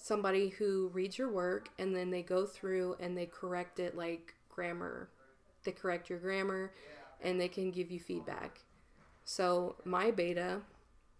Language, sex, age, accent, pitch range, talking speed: English, female, 20-39, American, 175-200 Hz, 155 wpm